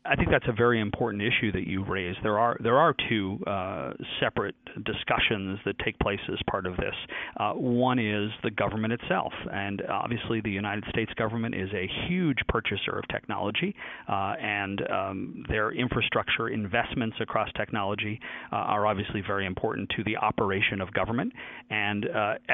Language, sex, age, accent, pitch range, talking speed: English, male, 40-59, American, 105-120 Hz, 170 wpm